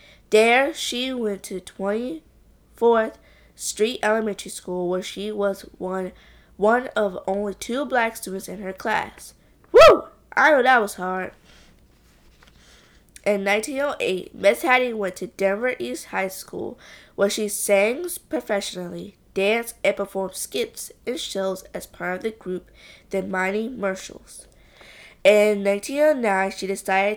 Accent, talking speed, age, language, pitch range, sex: American, 135 wpm, 20-39, English, 190-225 Hz, female